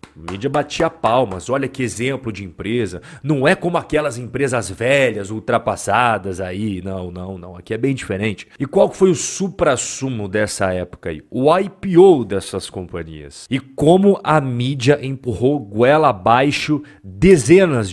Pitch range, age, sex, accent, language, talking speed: 115-150 Hz, 40-59, male, Brazilian, Portuguese, 145 wpm